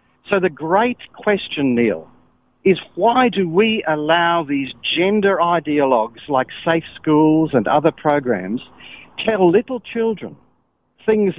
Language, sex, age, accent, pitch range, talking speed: English, male, 50-69, Australian, 150-195 Hz, 120 wpm